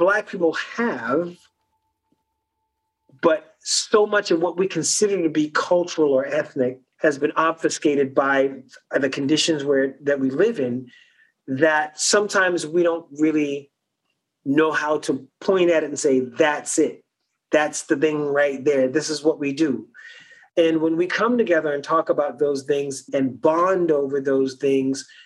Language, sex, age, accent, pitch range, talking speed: English, male, 40-59, American, 130-170 Hz, 155 wpm